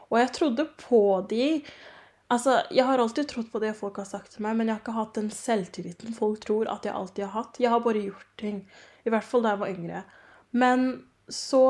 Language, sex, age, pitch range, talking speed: English, female, 20-39, 210-245 Hz, 225 wpm